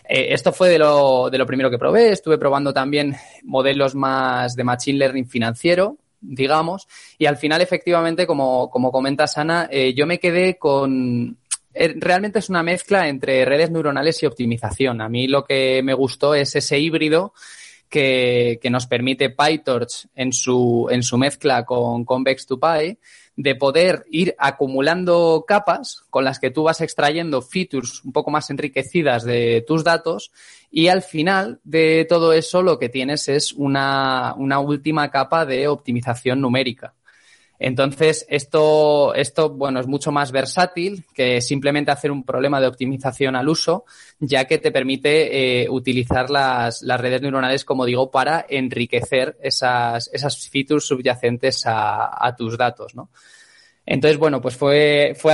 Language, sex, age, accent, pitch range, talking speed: Spanish, male, 20-39, Spanish, 130-155 Hz, 155 wpm